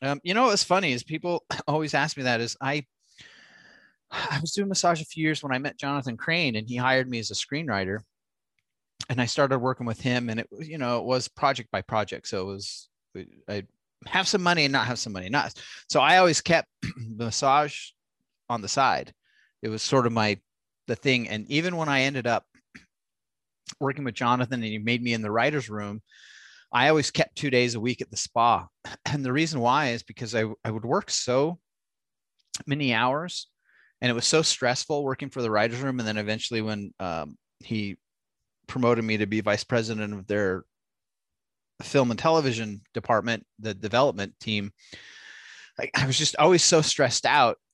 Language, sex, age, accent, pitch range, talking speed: English, male, 30-49, American, 110-145 Hz, 195 wpm